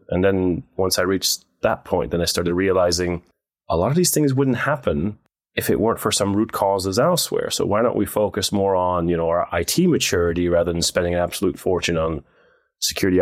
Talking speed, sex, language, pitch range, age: 210 wpm, male, English, 90-110 Hz, 30-49